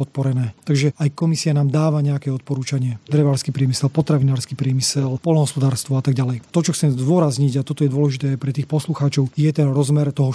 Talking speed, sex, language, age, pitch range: 180 wpm, male, Slovak, 30-49, 135-155 Hz